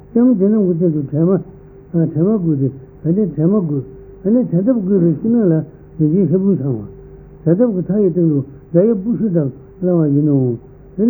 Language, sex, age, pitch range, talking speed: Italian, male, 60-79, 145-195 Hz, 125 wpm